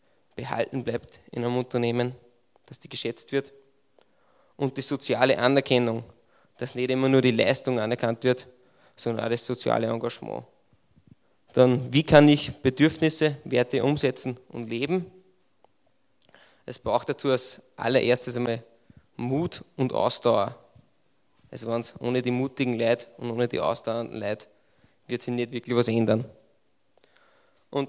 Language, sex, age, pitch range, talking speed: German, male, 20-39, 120-135 Hz, 130 wpm